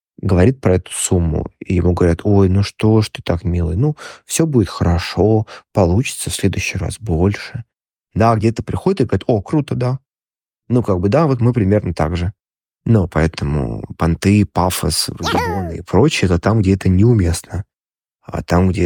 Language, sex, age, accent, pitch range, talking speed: Russian, male, 20-39, native, 95-120 Hz, 175 wpm